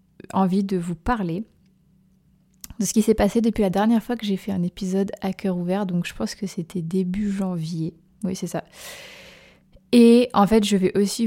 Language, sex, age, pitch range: French, female, 20-39, 175-200 Hz